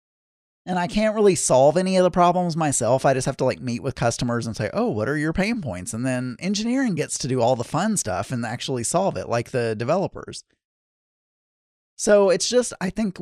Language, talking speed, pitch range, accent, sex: English, 220 wpm, 125-185 Hz, American, male